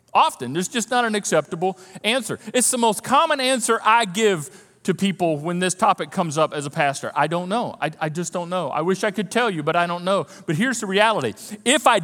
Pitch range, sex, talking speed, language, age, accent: 195-275 Hz, male, 240 wpm, English, 40-59, American